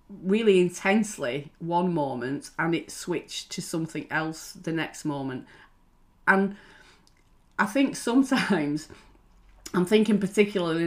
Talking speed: 110 wpm